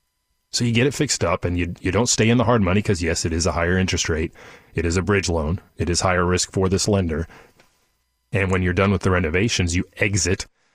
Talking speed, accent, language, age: 245 wpm, American, English, 30-49